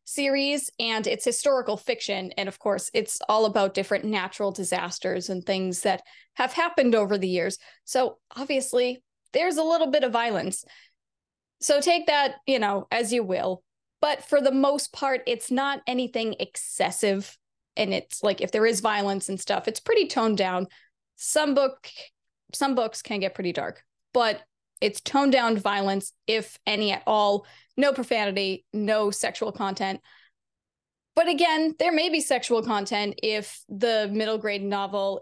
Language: English